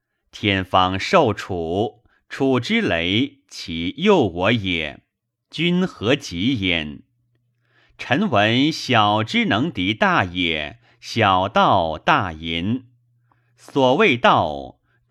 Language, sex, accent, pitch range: Chinese, male, native, 95-130 Hz